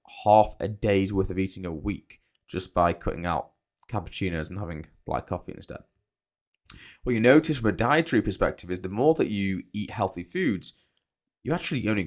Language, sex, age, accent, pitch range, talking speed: English, male, 20-39, British, 95-115 Hz, 180 wpm